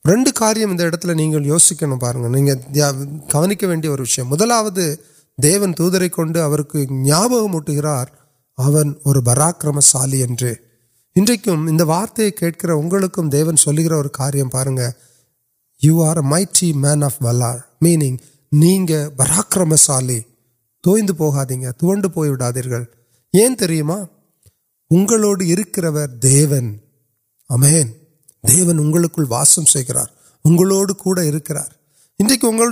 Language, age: Urdu, 30-49